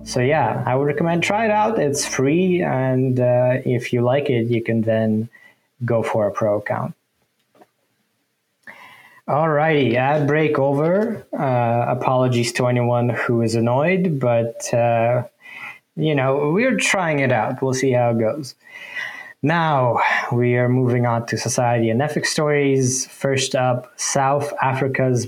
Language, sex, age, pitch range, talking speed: English, male, 20-39, 120-145 Hz, 150 wpm